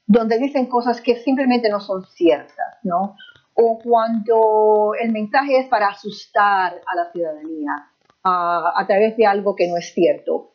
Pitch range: 200-245 Hz